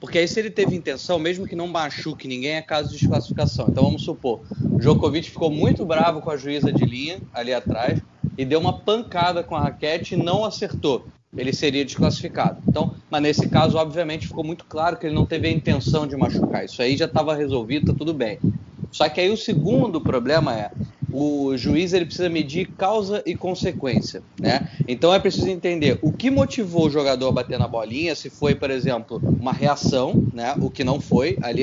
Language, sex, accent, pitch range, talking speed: Portuguese, male, Brazilian, 140-180 Hz, 205 wpm